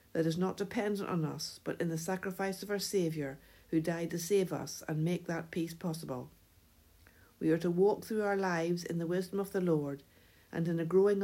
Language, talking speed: English, 215 wpm